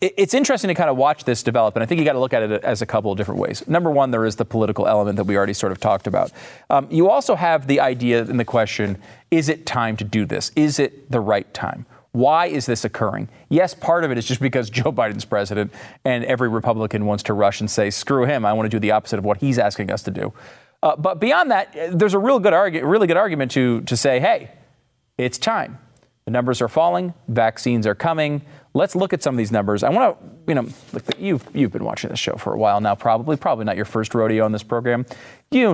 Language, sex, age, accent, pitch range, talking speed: English, male, 40-59, American, 110-155 Hz, 255 wpm